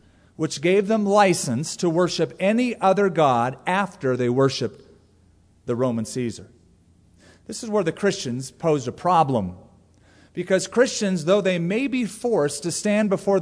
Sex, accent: male, American